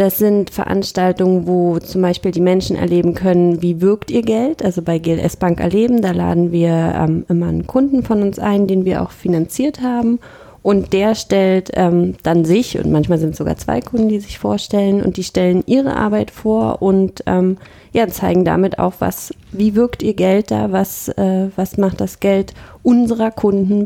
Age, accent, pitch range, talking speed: 30-49, German, 170-200 Hz, 185 wpm